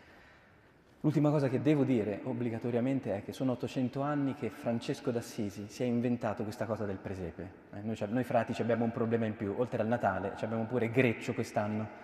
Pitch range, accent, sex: 105-130 Hz, native, male